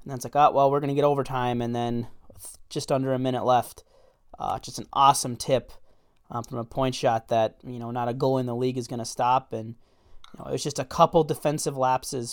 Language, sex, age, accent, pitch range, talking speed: English, male, 20-39, American, 120-140 Hz, 250 wpm